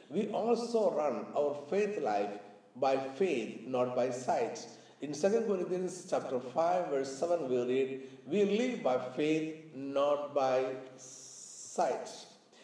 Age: 50-69